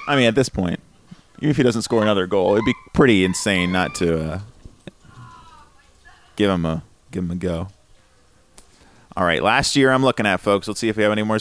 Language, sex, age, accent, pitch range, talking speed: English, male, 30-49, American, 95-130 Hz, 210 wpm